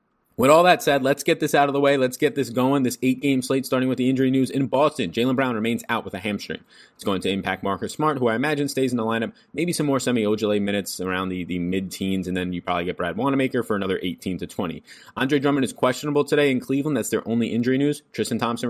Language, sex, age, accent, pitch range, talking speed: English, male, 20-39, American, 95-135 Hz, 255 wpm